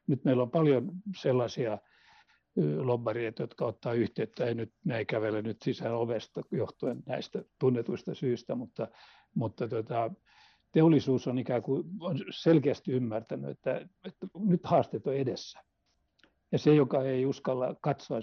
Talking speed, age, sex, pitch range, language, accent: 140 wpm, 60-79, male, 120-160 Hz, Finnish, native